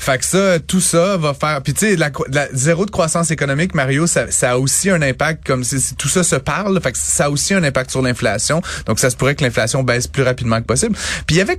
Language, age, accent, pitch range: French, 30-49, Canadian, 120-150 Hz